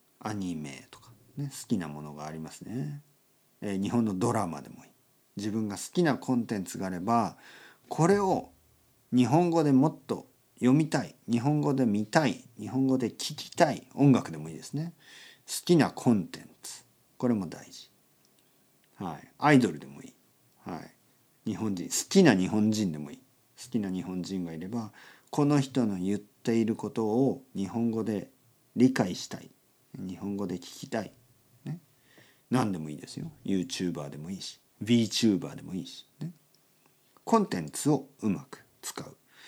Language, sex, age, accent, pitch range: Japanese, male, 50-69, native, 95-145 Hz